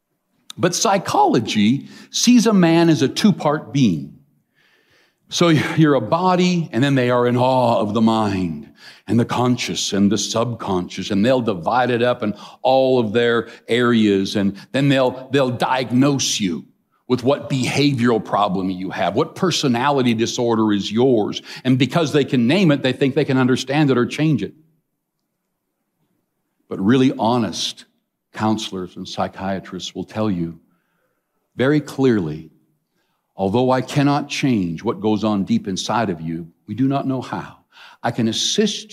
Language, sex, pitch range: English, male, 110-145 Hz